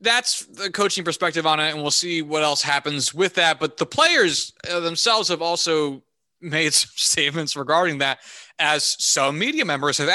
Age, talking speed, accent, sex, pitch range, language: 30-49, 175 wpm, American, male, 145-190 Hz, English